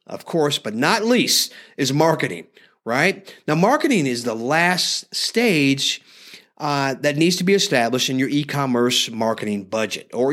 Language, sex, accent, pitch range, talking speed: English, male, American, 125-155 Hz, 150 wpm